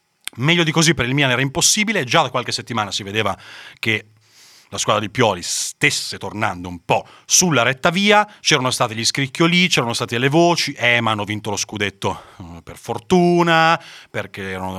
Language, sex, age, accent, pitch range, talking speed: Italian, male, 30-49, native, 110-155 Hz, 180 wpm